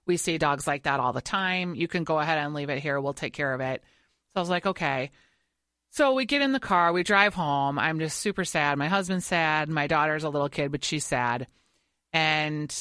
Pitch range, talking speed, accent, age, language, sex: 160-235 Hz, 240 wpm, American, 30-49, English, female